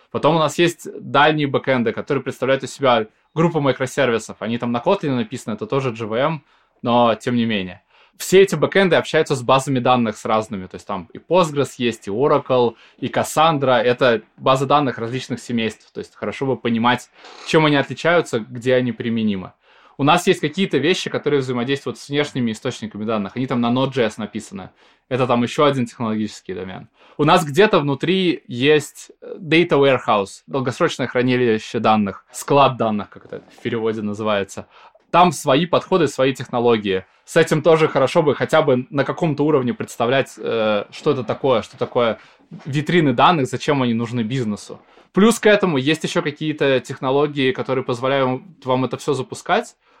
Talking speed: 165 wpm